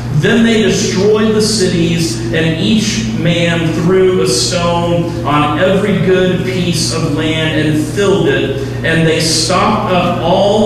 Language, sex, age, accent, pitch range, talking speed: English, male, 40-59, American, 145-175 Hz, 140 wpm